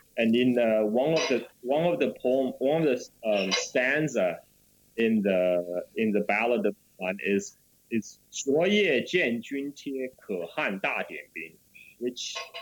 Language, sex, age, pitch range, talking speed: English, male, 30-49, 115-160 Hz, 125 wpm